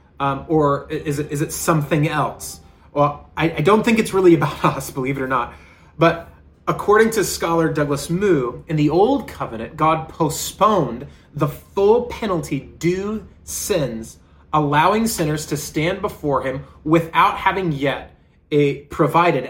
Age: 30-49